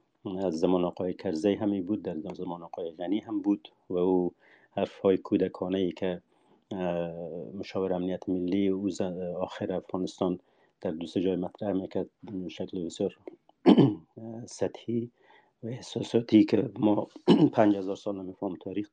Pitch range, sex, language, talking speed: 90-105 Hz, male, Persian, 135 wpm